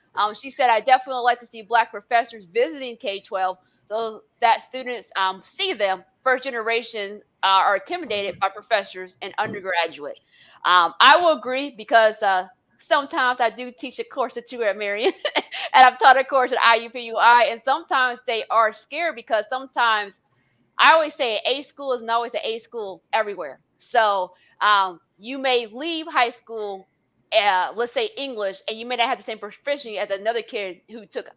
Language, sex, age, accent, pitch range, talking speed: English, female, 20-39, American, 210-270 Hz, 175 wpm